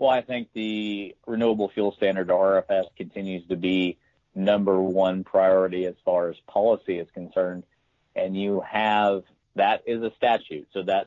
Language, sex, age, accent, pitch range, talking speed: English, male, 40-59, American, 90-105 Hz, 165 wpm